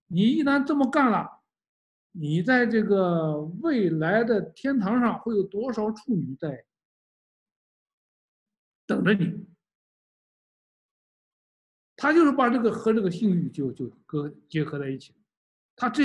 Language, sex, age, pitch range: Chinese, male, 60-79, 155-230 Hz